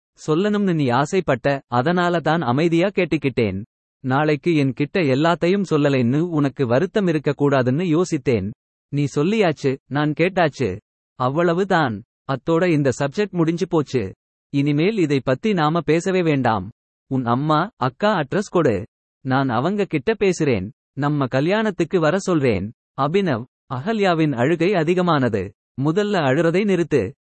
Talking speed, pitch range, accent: 110 wpm, 135-175 Hz, native